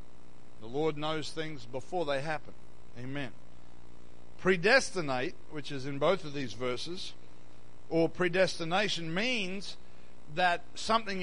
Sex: male